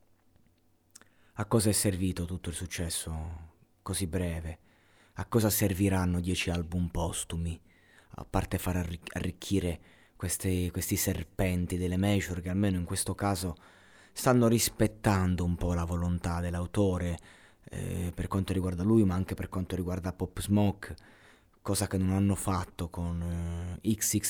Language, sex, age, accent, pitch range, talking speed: Italian, male, 30-49, native, 85-100 Hz, 140 wpm